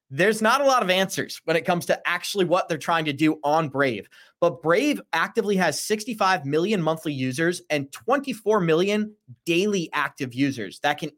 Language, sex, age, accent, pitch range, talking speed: English, male, 30-49, American, 140-185 Hz, 185 wpm